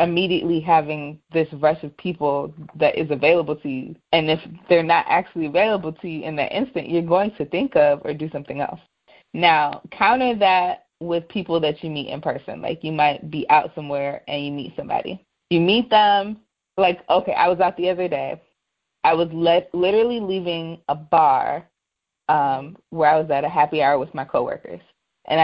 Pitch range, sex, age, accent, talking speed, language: 150-180 Hz, female, 20-39, American, 190 wpm, English